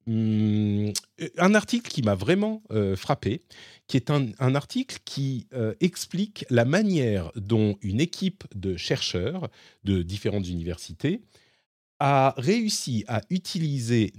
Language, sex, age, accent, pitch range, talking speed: French, male, 40-59, French, 100-140 Hz, 125 wpm